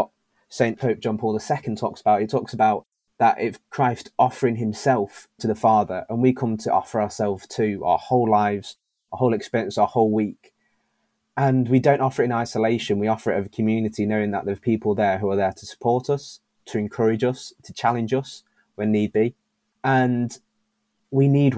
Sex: male